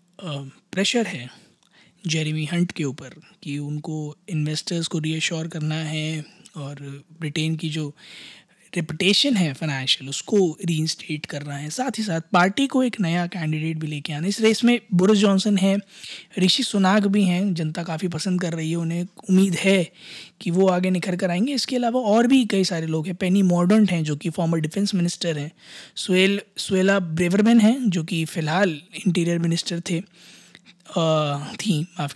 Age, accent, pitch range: 20-39, native, 155-195 Hz